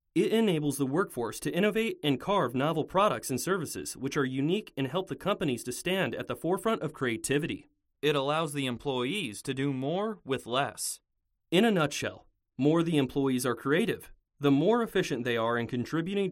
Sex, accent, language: male, American, English